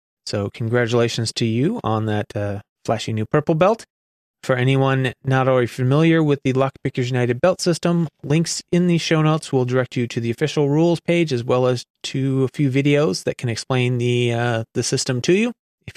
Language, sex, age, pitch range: English, male, 30-49, 120-155 Hz